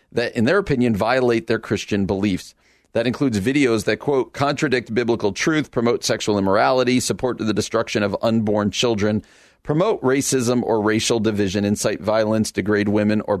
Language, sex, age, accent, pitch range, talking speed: English, male, 40-59, American, 105-130 Hz, 155 wpm